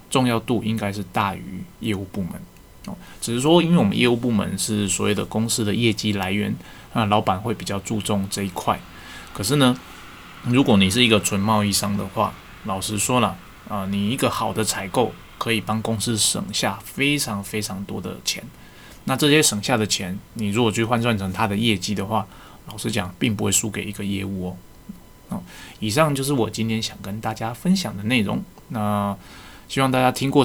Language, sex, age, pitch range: Chinese, male, 20-39, 100-120 Hz